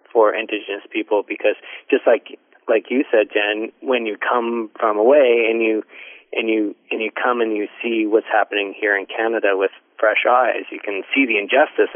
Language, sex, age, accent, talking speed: English, male, 40-59, American, 190 wpm